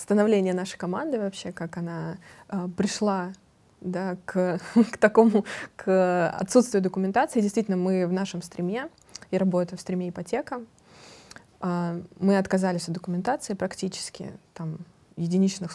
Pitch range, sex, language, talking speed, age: 175-200 Hz, female, Russian, 115 wpm, 20-39